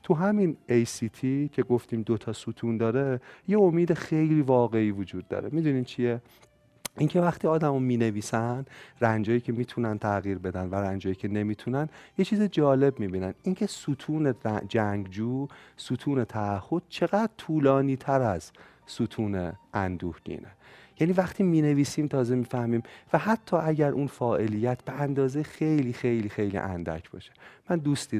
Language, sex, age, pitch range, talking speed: Persian, male, 30-49, 105-150 Hz, 145 wpm